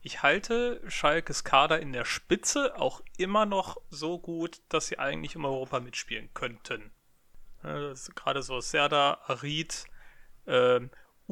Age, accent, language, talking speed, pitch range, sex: 30-49, German, German, 135 wpm, 130-155 Hz, male